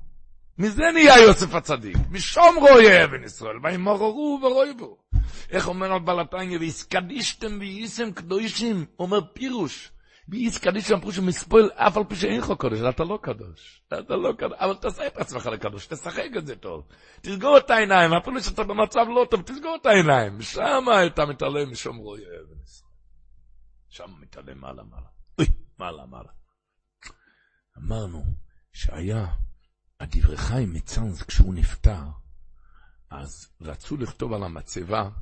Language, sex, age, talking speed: Hebrew, male, 60-79, 100 wpm